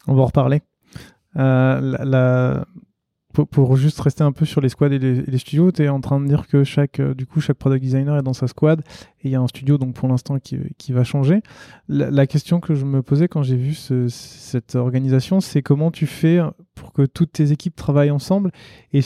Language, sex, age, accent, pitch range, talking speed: French, male, 20-39, French, 130-150 Hz, 235 wpm